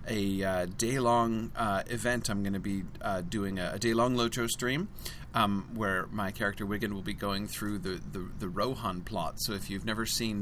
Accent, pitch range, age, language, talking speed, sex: American, 100-125 Hz, 30-49, English, 200 wpm, male